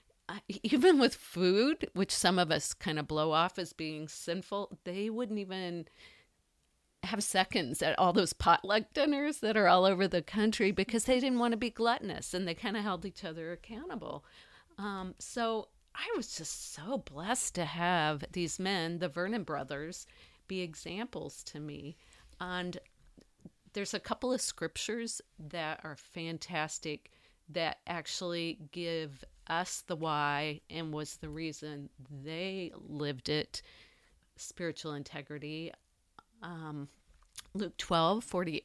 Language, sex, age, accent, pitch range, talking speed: English, female, 50-69, American, 155-200 Hz, 140 wpm